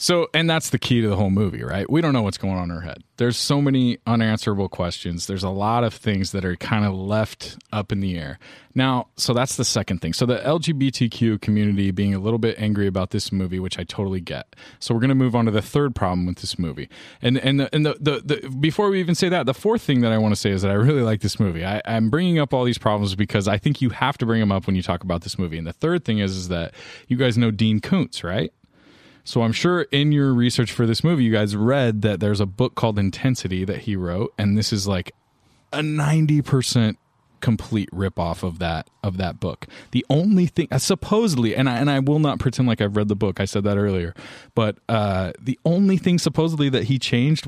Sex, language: male, English